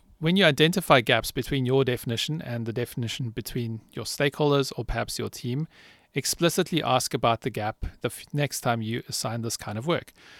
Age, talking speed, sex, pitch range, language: 40-59, 180 wpm, male, 120-145 Hz, English